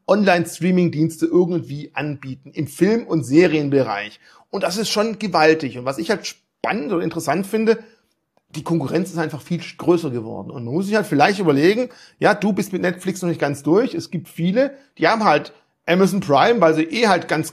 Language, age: German, 40-59